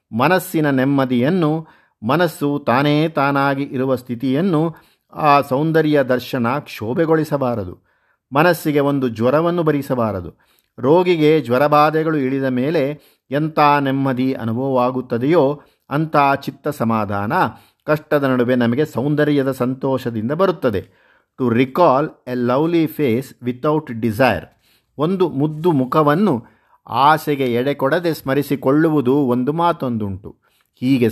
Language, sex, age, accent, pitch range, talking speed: Kannada, male, 50-69, native, 125-150 Hz, 95 wpm